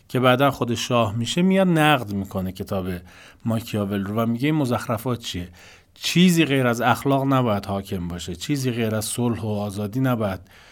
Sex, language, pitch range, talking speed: male, Persian, 100-145 Hz, 160 wpm